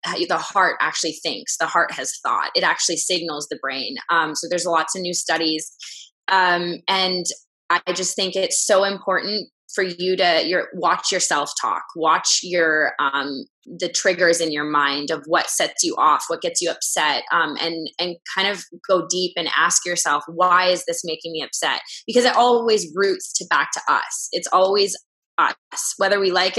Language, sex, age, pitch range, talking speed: English, female, 20-39, 165-195 Hz, 185 wpm